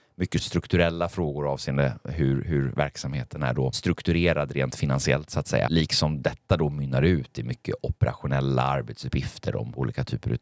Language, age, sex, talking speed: Swedish, 30-49, male, 155 wpm